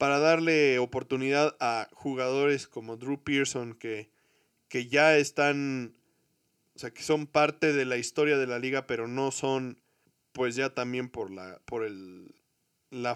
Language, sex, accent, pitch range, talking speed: Spanish, male, Mexican, 120-145 Hz, 155 wpm